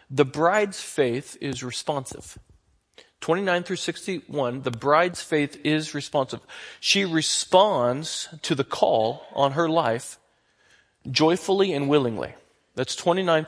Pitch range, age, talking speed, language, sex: 135-175 Hz, 40-59, 115 wpm, English, male